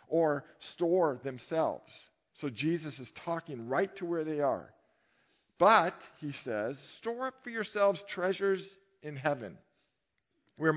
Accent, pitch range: American, 135-195 Hz